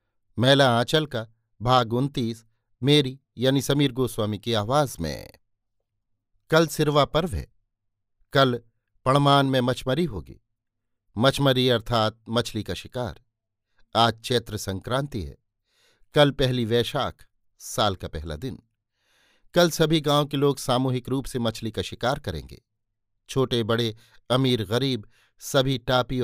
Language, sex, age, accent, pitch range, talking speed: Hindi, male, 50-69, native, 105-135 Hz, 125 wpm